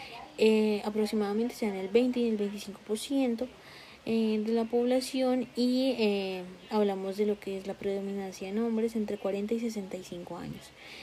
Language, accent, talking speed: Spanish, Colombian, 150 wpm